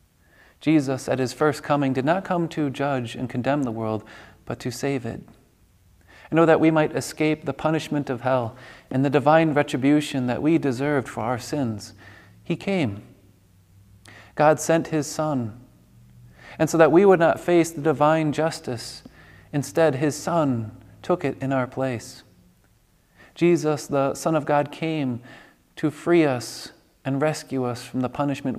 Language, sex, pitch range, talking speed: English, male, 125-155 Hz, 160 wpm